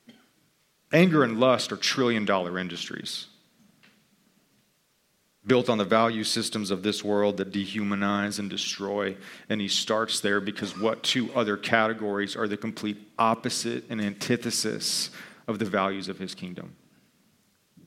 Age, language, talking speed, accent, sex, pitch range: 40-59, English, 135 wpm, American, male, 100-125 Hz